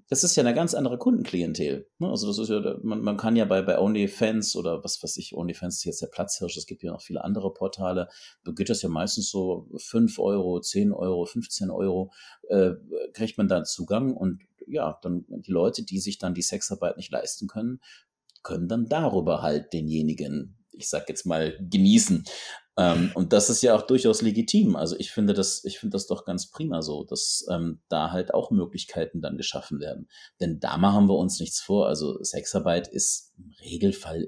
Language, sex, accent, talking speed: German, male, German, 195 wpm